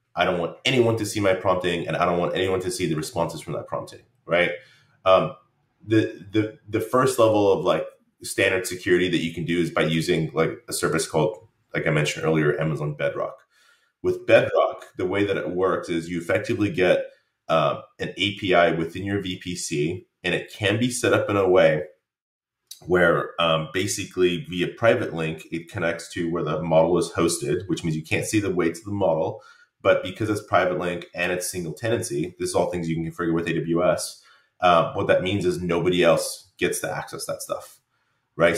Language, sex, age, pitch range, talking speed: English, male, 30-49, 85-100 Hz, 200 wpm